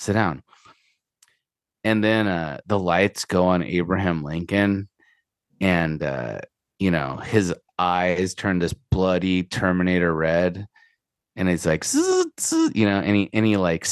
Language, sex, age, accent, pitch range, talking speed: English, male, 30-49, American, 85-105 Hz, 140 wpm